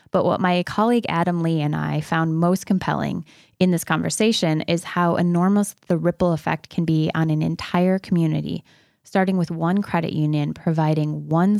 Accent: American